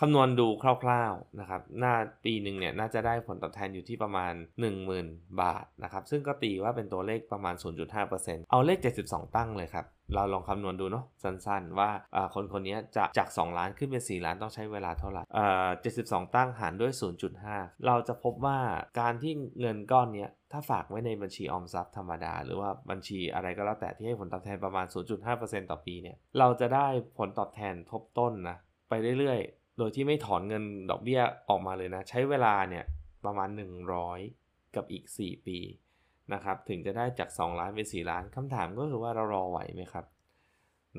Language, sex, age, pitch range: Thai, male, 20-39, 90-120 Hz